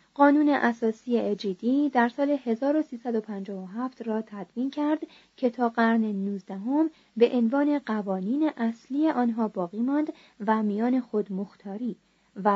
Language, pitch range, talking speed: Persian, 205-260 Hz, 120 wpm